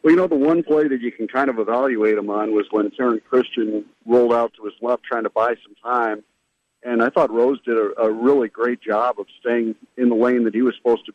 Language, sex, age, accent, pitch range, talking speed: English, male, 50-69, American, 115-130 Hz, 260 wpm